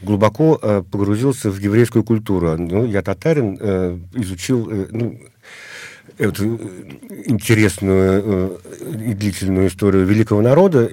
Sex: male